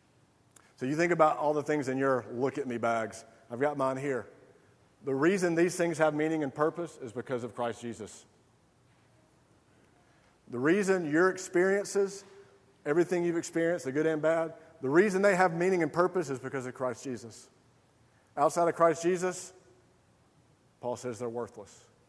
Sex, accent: male, American